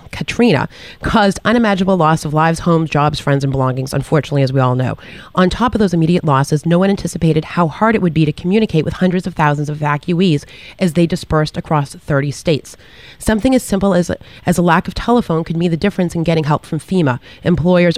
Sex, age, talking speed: female, 30-49, 210 wpm